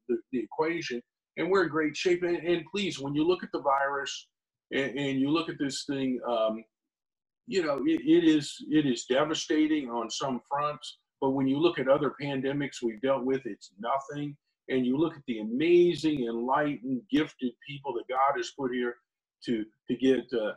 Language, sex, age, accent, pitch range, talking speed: English, male, 50-69, American, 130-160 Hz, 195 wpm